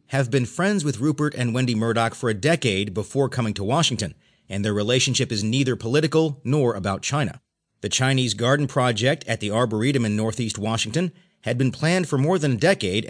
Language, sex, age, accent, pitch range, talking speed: English, male, 40-59, American, 110-145 Hz, 195 wpm